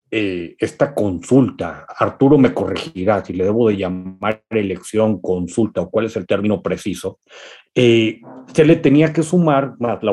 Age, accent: 40-59, Mexican